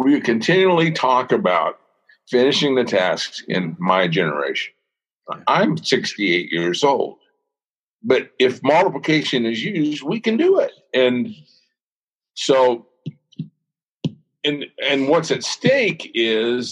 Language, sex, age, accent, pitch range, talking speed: English, male, 50-69, American, 125-190 Hz, 110 wpm